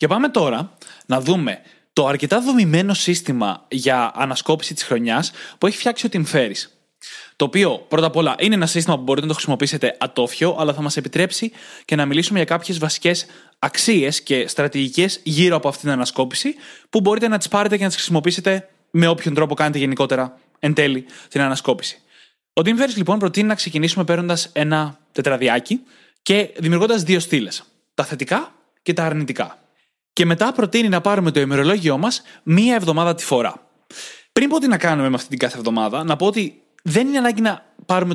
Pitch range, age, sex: 145-195 Hz, 20-39, male